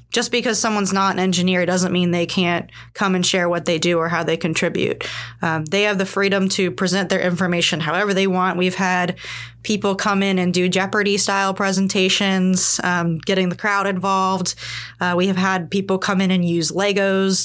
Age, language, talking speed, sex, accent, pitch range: 20-39, English, 195 wpm, female, American, 170-190 Hz